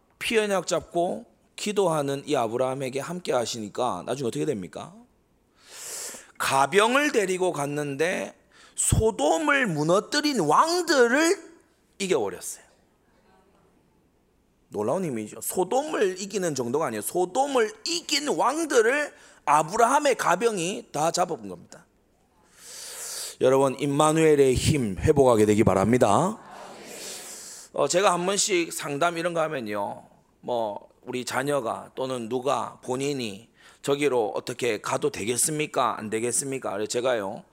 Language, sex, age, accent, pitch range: Korean, male, 30-49, native, 140-230 Hz